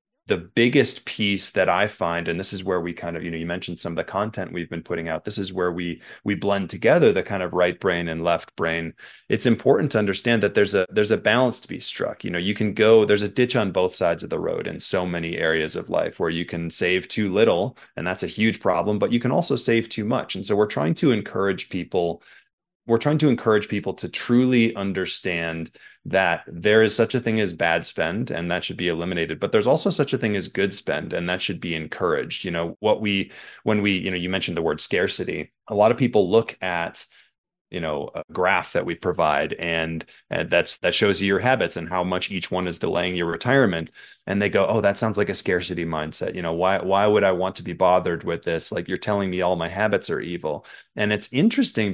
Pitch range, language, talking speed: 85-105 Hz, English, 245 wpm